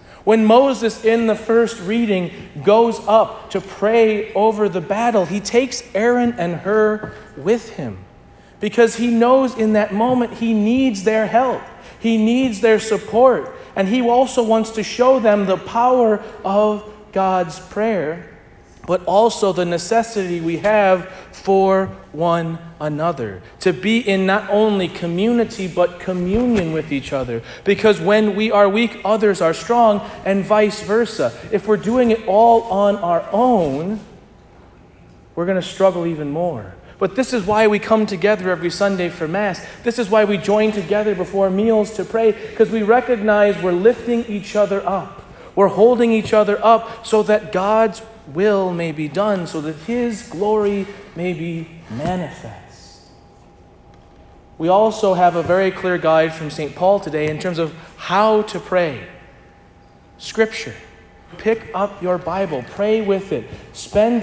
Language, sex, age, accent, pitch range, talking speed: English, male, 40-59, American, 180-220 Hz, 155 wpm